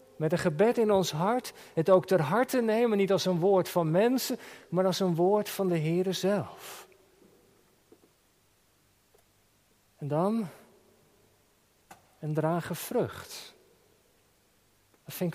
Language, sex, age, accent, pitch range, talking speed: Dutch, male, 50-69, Dutch, 150-205 Hz, 125 wpm